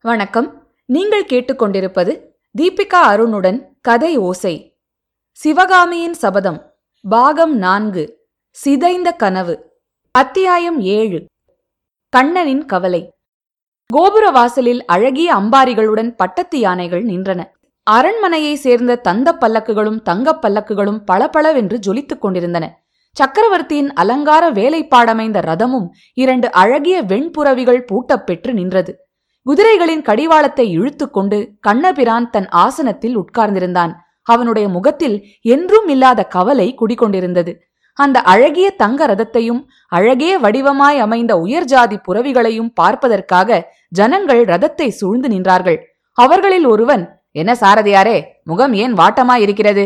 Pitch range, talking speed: 200-295 Hz, 90 wpm